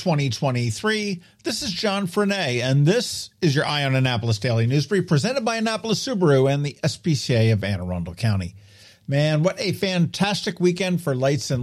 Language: English